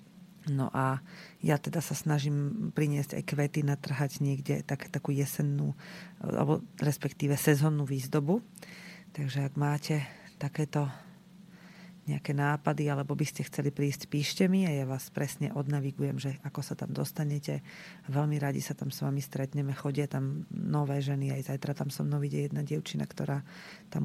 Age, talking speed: 30-49, 150 wpm